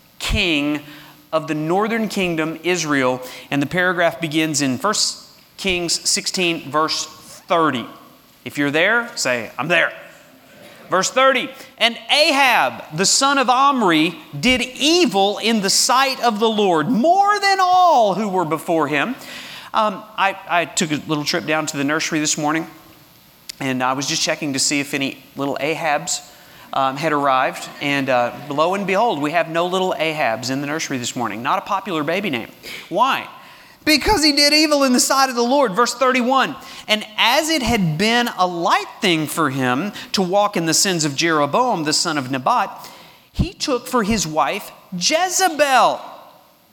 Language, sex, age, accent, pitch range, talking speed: English, male, 40-59, American, 155-245 Hz, 170 wpm